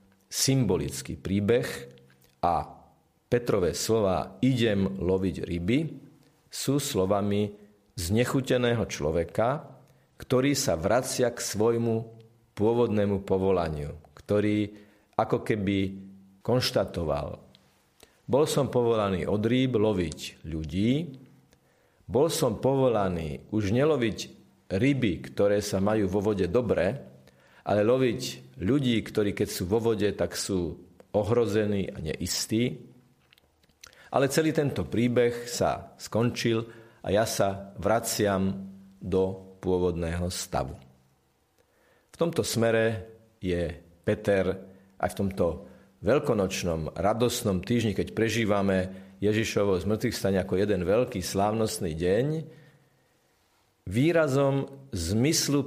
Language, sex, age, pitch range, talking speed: Slovak, male, 50-69, 95-120 Hz, 95 wpm